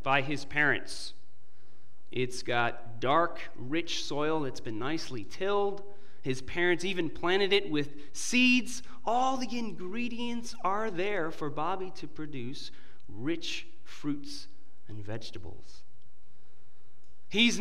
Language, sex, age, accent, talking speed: English, male, 40-59, American, 110 wpm